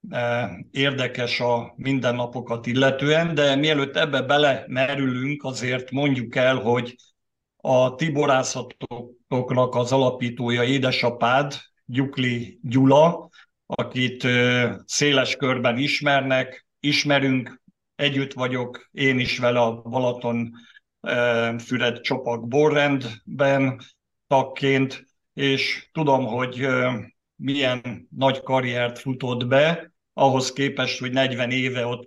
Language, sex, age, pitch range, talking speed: Hungarian, male, 50-69, 120-135 Hz, 90 wpm